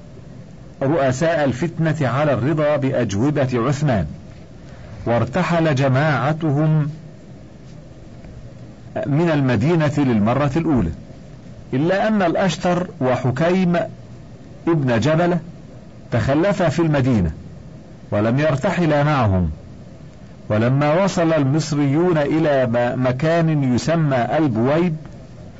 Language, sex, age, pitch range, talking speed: Arabic, male, 50-69, 130-160 Hz, 75 wpm